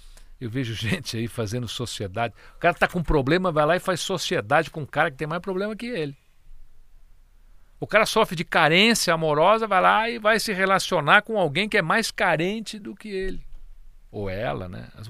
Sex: male